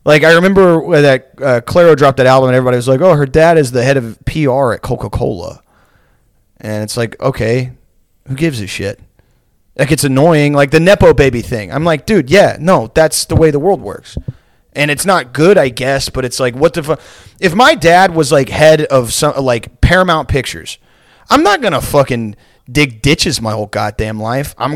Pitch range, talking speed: 125-165 Hz, 205 wpm